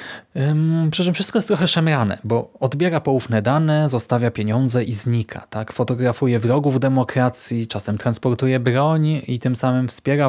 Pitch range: 120-160 Hz